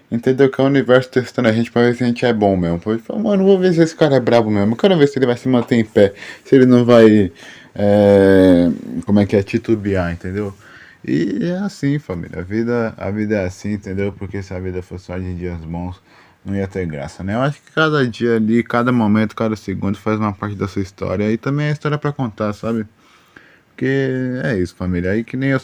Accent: Brazilian